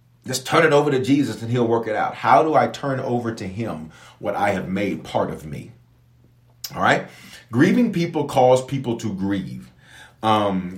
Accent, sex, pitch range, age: American, male, 115-145 Hz, 40-59